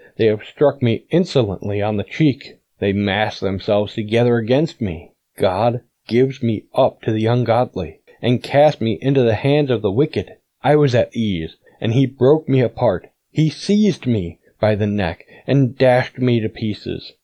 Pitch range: 110-135 Hz